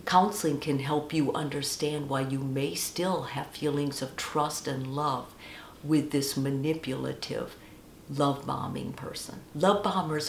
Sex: female